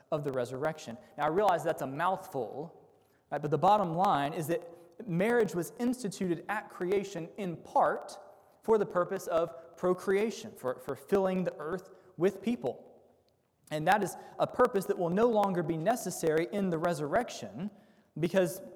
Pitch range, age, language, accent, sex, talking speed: 150-195 Hz, 20-39, English, American, male, 160 wpm